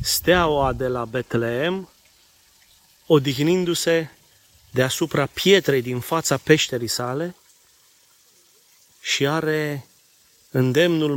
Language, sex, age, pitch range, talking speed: Romanian, male, 30-49, 120-155 Hz, 75 wpm